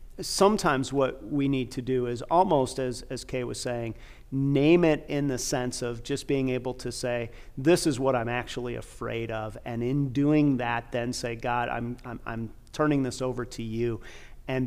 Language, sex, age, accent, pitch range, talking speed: English, male, 40-59, American, 120-140 Hz, 190 wpm